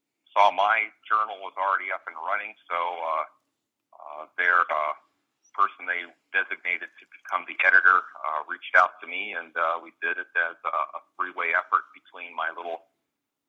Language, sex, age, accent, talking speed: English, male, 40-59, American, 160 wpm